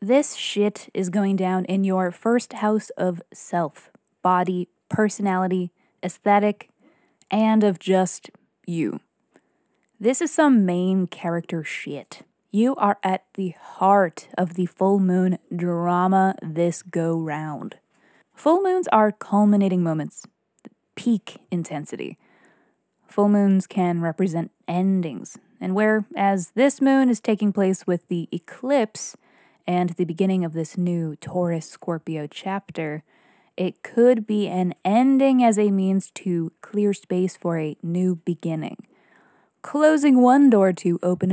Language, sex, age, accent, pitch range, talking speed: English, female, 20-39, American, 175-210 Hz, 125 wpm